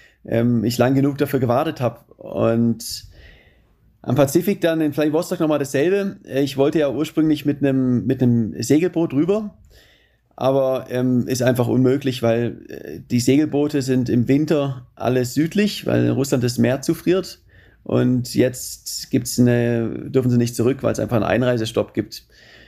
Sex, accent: male, German